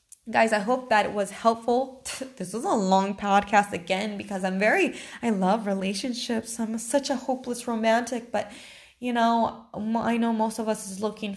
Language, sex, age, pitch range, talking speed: English, female, 20-39, 195-245 Hz, 180 wpm